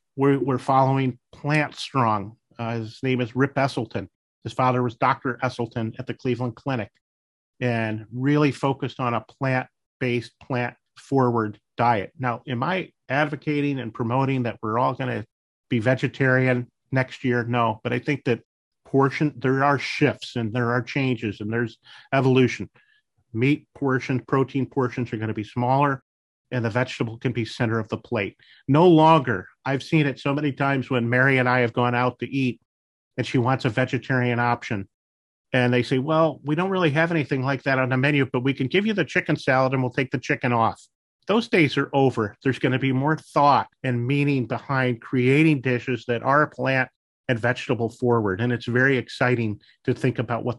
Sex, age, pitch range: male, 40-59, 120-135 Hz